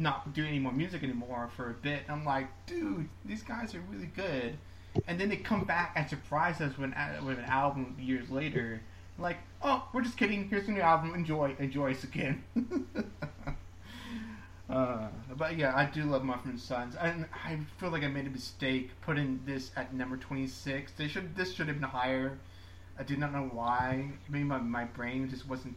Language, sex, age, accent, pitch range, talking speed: English, male, 30-49, American, 115-150 Hz, 200 wpm